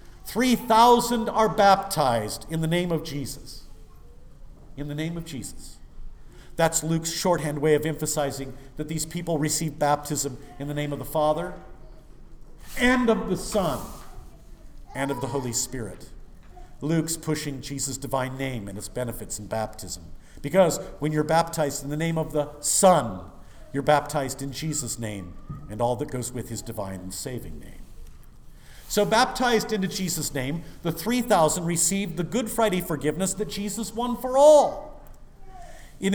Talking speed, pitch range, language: 155 wpm, 140-200 Hz, English